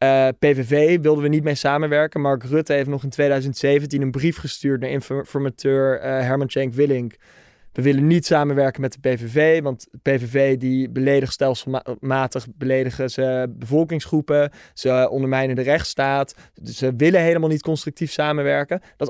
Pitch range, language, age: 135-150 Hz, Dutch, 20-39